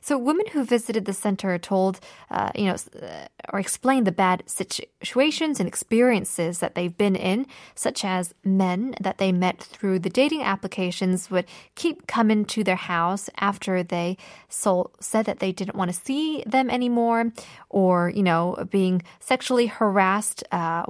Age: 20-39